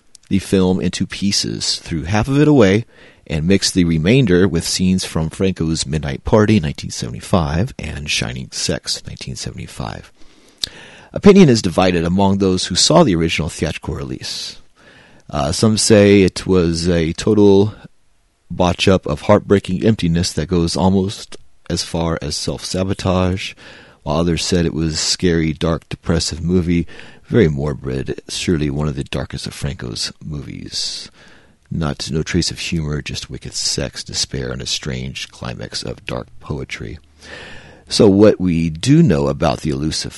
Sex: male